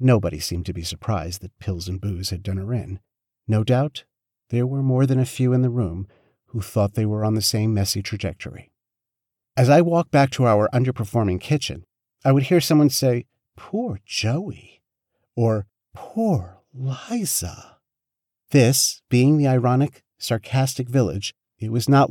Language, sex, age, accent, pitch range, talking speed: English, male, 50-69, American, 105-130 Hz, 165 wpm